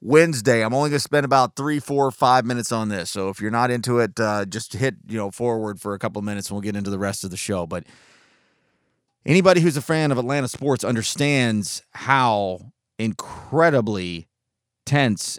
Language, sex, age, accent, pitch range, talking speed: English, male, 30-49, American, 105-135 Hz, 200 wpm